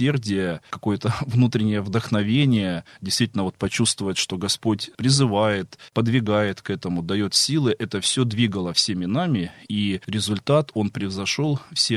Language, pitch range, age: Russian, 100-115 Hz, 20-39